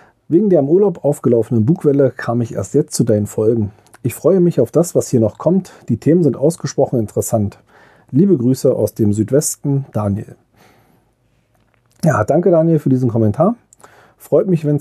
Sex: male